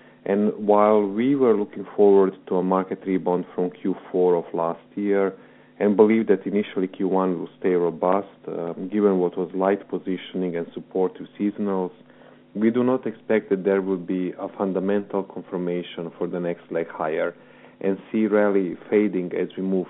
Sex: male